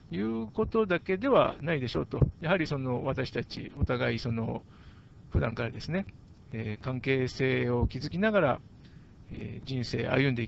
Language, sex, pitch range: Japanese, male, 120-175 Hz